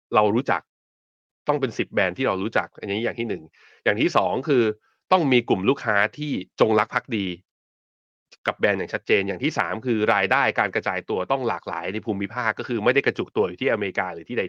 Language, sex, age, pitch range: Thai, male, 20-39, 95-125 Hz